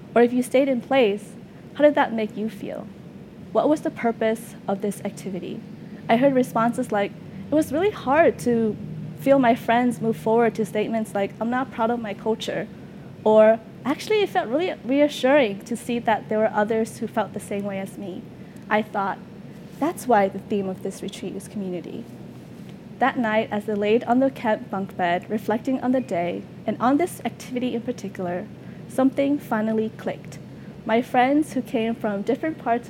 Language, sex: English, female